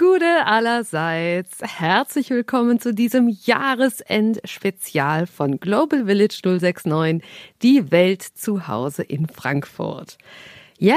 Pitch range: 170-235 Hz